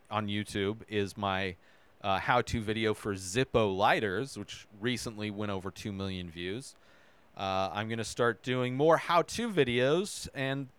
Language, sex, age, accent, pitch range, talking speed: English, male, 40-59, American, 105-135 Hz, 150 wpm